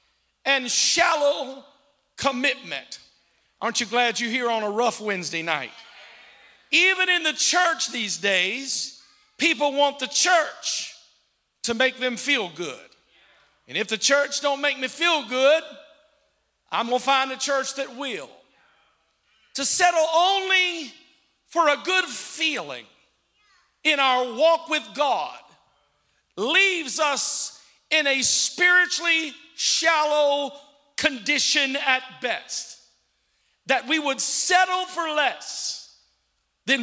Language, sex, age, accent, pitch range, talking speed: English, male, 50-69, American, 255-330 Hz, 120 wpm